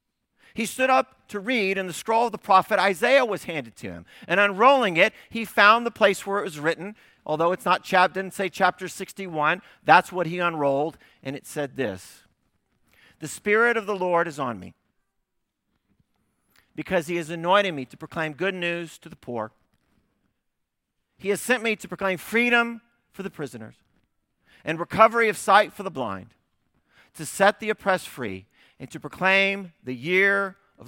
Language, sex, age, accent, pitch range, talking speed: English, male, 40-59, American, 140-205 Hz, 175 wpm